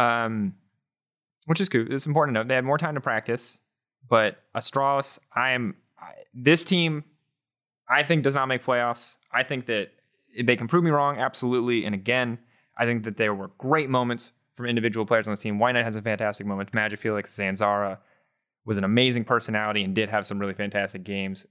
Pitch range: 110-140 Hz